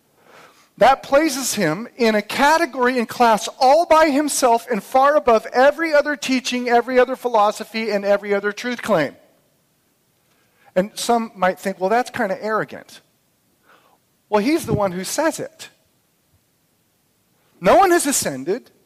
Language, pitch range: English, 205-270 Hz